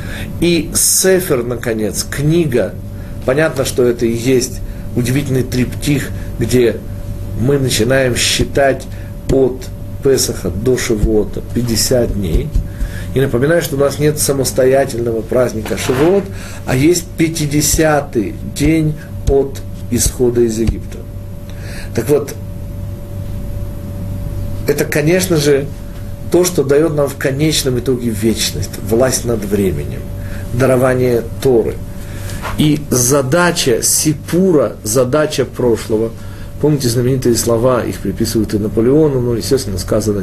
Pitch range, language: 100-140 Hz, Russian